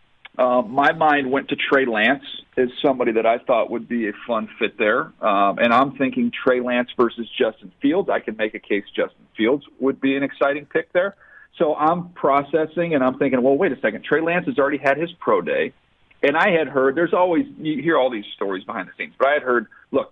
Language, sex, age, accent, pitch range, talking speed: English, male, 40-59, American, 115-150 Hz, 230 wpm